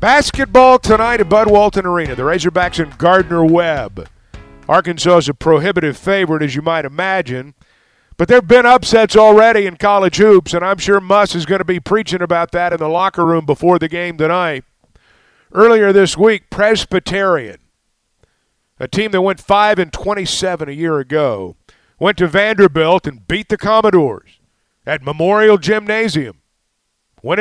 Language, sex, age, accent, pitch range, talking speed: English, male, 50-69, American, 155-200 Hz, 155 wpm